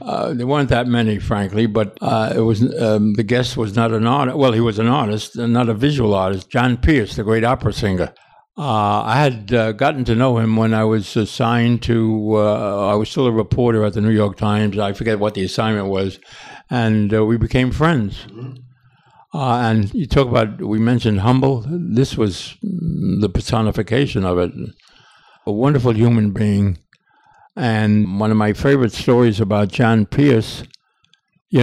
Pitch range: 105-125 Hz